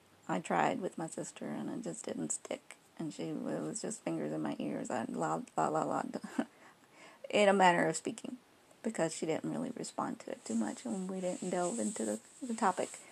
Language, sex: English, female